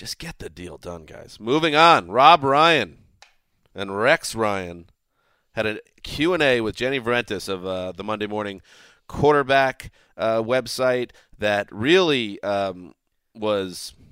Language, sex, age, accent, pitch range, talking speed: English, male, 30-49, American, 100-120 Hz, 140 wpm